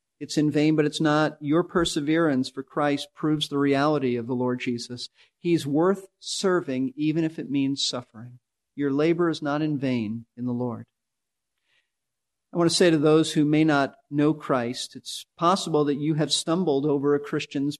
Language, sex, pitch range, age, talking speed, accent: English, male, 130-160 Hz, 40-59, 180 wpm, American